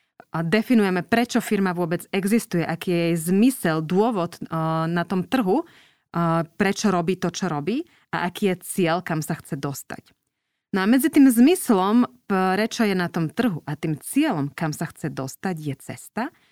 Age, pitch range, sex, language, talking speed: 20-39, 160-210 Hz, female, Slovak, 165 wpm